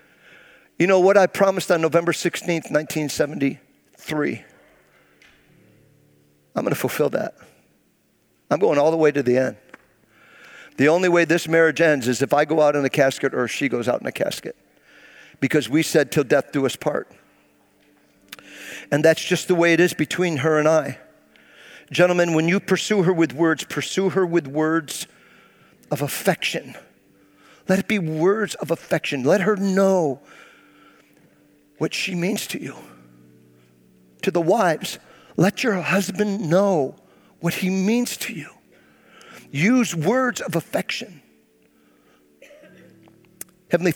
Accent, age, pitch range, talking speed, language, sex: American, 50-69, 145-180 Hz, 145 wpm, English, male